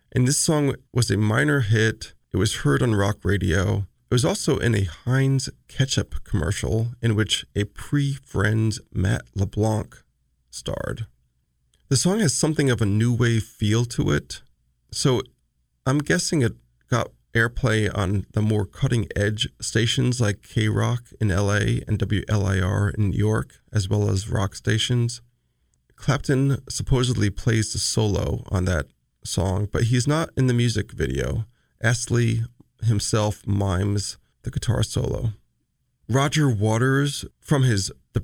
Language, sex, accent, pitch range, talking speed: English, male, American, 100-125 Hz, 145 wpm